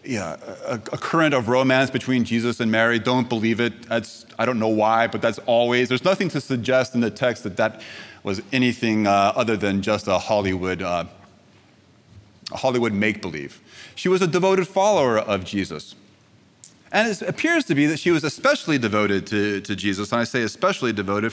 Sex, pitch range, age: male, 110-140 Hz, 30-49